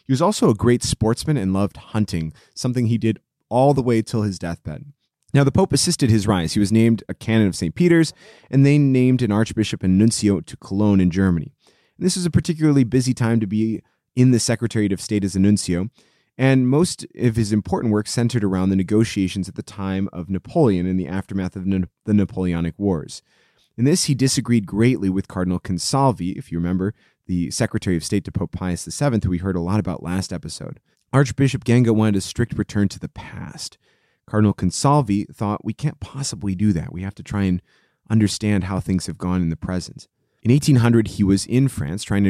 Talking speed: 210 wpm